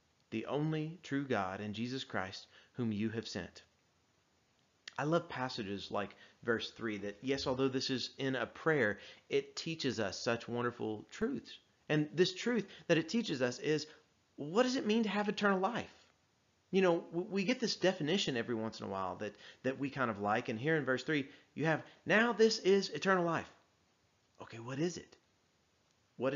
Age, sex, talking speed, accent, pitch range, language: 30-49, male, 185 wpm, American, 100-155 Hz, English